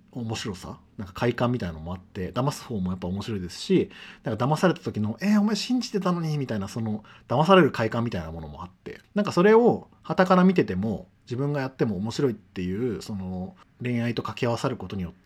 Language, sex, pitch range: Japanese, male, 95-155 Hz